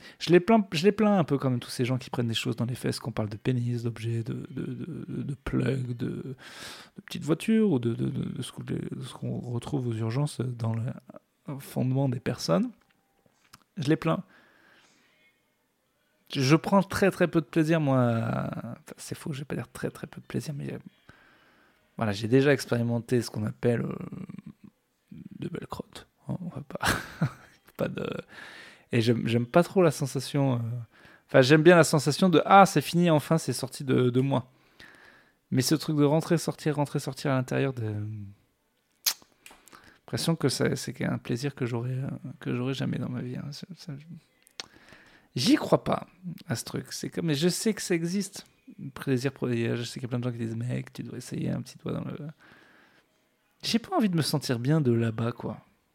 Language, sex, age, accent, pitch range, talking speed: French, male, 20-39, French, 120-160 Hz, 205 wpm